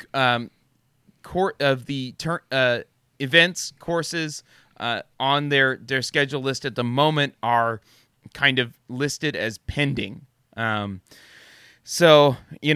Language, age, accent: English, 20-39, American